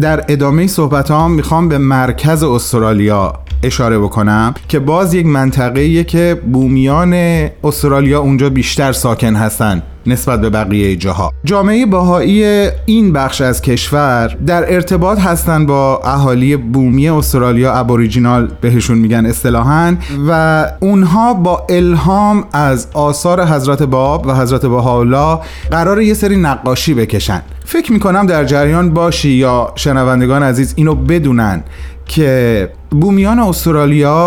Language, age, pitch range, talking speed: Persian, 30-49, 120-170 Hz, 125 wpm